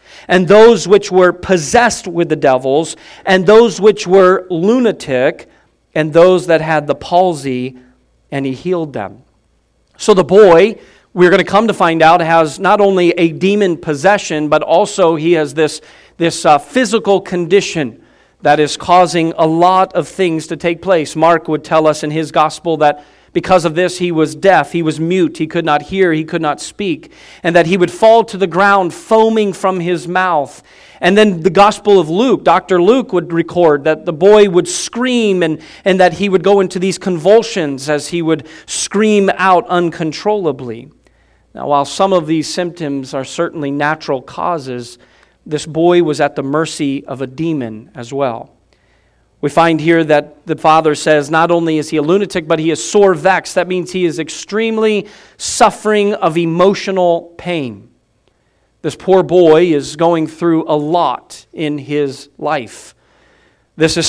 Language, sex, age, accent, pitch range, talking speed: English, male, 40-59, American, 155-185 Hz, 175 wpm